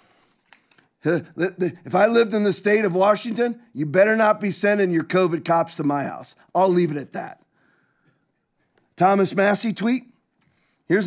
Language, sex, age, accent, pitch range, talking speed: English, male, 40-59, American, 185-245 Hz, 155 wpm